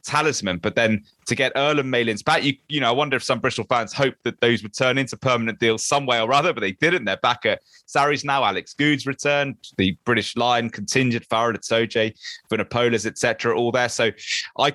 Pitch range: 110-145 Hz